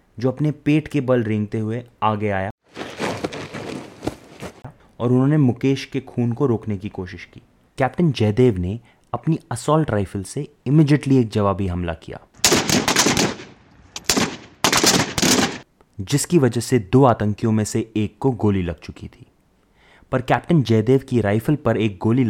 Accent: native